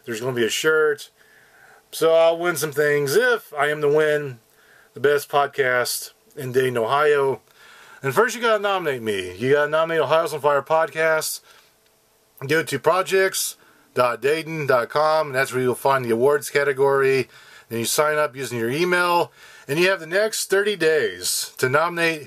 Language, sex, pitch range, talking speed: English, male, 140-190 Hz, 165 wpm